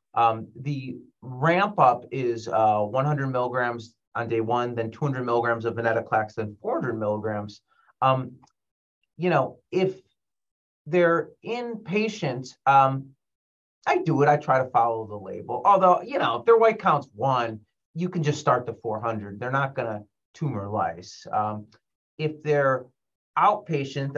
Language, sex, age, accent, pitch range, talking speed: English, male, 30-49, American, 110-145 Hz, 145 wpm